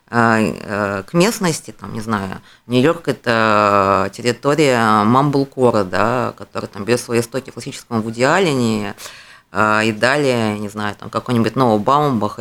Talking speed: 125 wpm